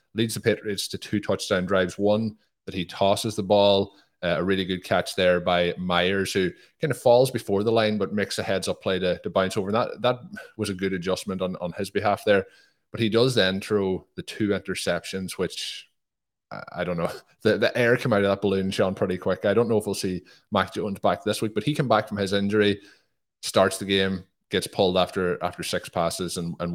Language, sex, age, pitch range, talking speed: English, male, 20-39, 90-100 Hz, 230 wpm